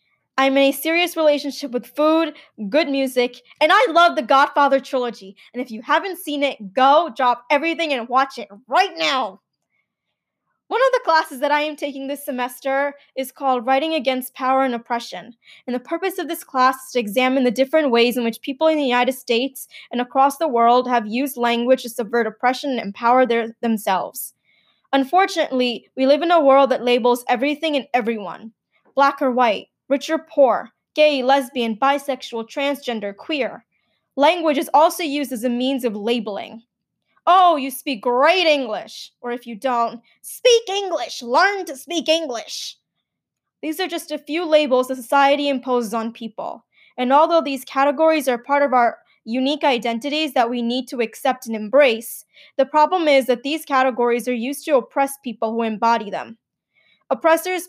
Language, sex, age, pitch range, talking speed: English, female, 20-39, 245-300 Hz, 175 wpm